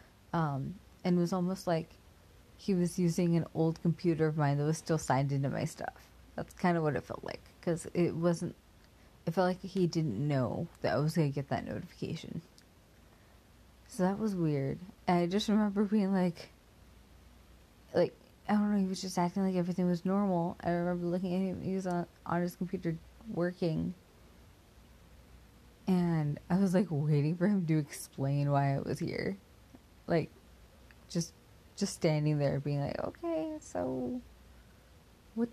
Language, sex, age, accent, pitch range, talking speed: English, female, 30-49, American, 140-195 Hz, 170 wpm